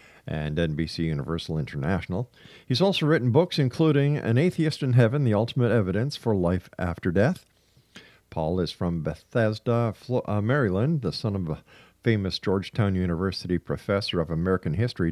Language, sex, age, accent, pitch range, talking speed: English, male, 50-69, American, 90-130 Hz, 145 wpm